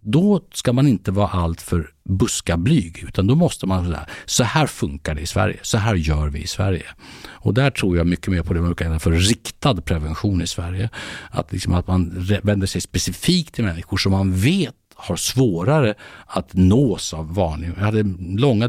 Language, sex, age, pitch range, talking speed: Swedish, male, 60-79, 90-120 Hz, 195 wpm